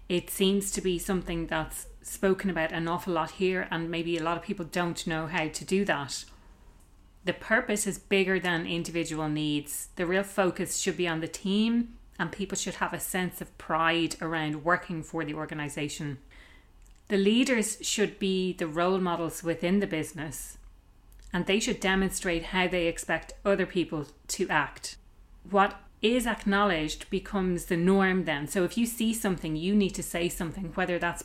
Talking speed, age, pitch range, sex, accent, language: 175 wpm, 30-49, 165-195 Hz, female, Irish, English